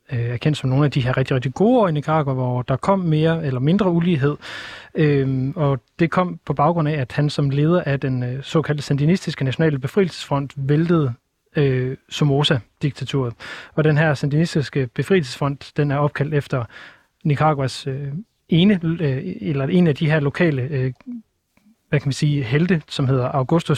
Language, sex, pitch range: Danish, male, 135-160 Hz